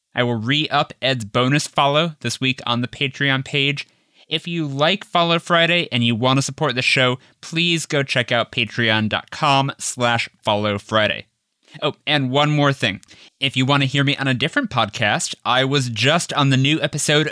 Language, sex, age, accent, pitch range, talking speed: English, male, 20-39, American, 110-140 Hz, 185 wpm